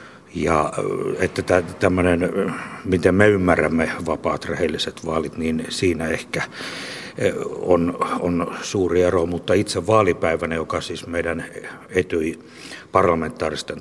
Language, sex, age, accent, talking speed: Finnish, male, 60-79, native, 105 wpm